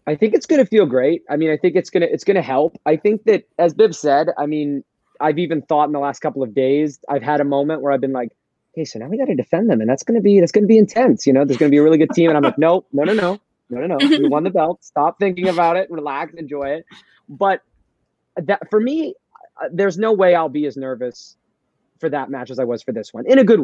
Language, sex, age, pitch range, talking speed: English, male, 30-49, 140-195 Hz, 275 wpm